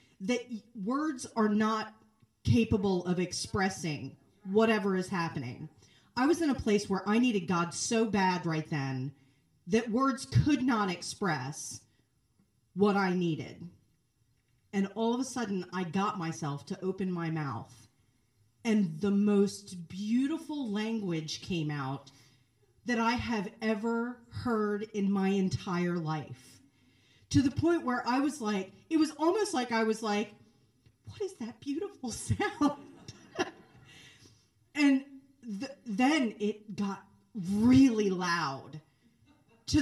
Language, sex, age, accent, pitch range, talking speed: English, female, 40-59, American, 155-250 Hz, 130 wpm